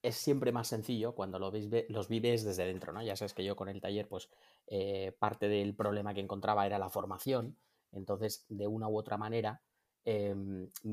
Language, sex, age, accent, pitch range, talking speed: Spanish, male, 30-49, Spanish, 100-115 Hz, 200 wpm